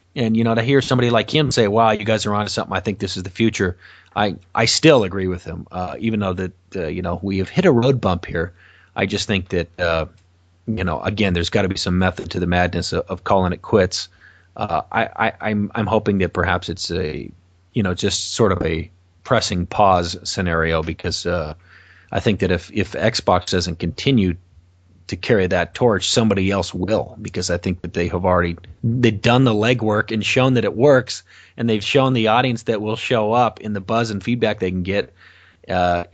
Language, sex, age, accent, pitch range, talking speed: English, male, 30-49, American, 90-110 Hz, 220 wpm